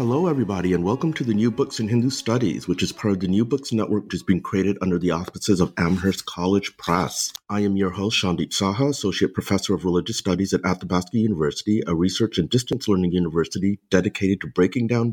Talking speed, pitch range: 215 wpm, 85-110 Hz